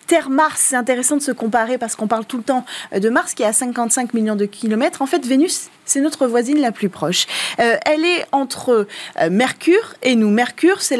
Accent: French